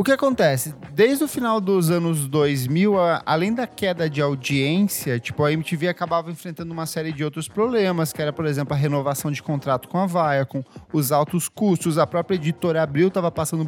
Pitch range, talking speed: 155-195 Hz, 195 wpm